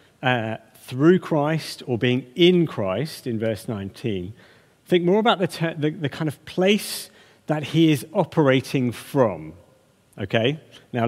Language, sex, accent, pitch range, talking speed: English, male, British, 120-175 Hz, 145 wpm